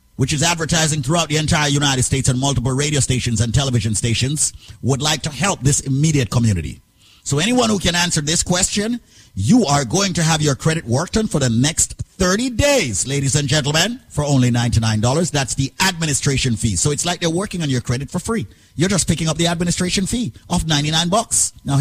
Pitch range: 120-170 Hz